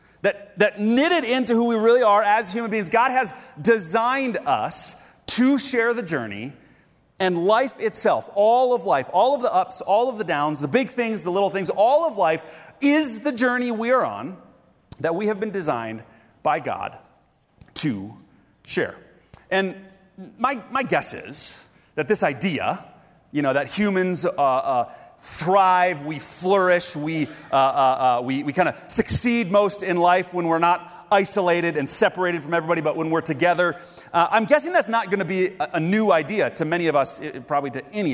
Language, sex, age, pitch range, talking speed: English, male, 30-49, 170-235 Hz, 185 wpm